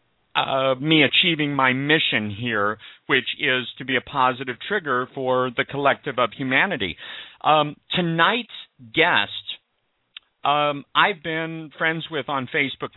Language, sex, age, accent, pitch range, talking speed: English, male, 50-69, American, 130-160 Hz, 130 wpm